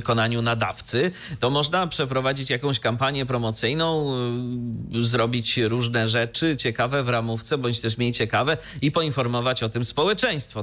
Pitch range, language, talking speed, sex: 115-150 Hz, Polish, 130 wpm, male